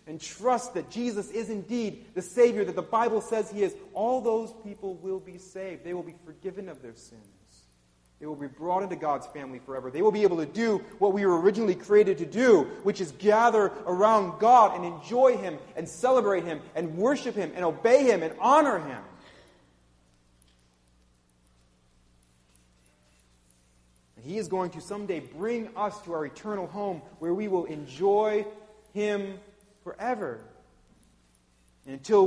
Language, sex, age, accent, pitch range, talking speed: English, male, 30-49, American, 150-225 Hz, 165 wpm